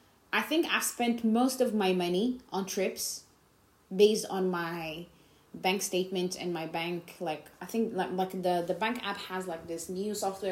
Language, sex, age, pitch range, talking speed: English, female, 20-39, 175-220 Hz, 185 wpm